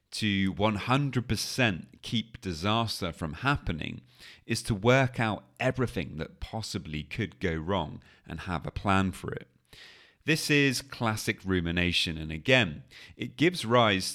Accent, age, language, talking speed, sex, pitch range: British, 30-49, English, 130 wpm, male, 85-115 Hz